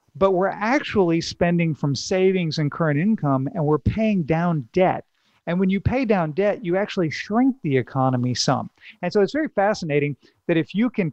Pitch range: 145-190 Hz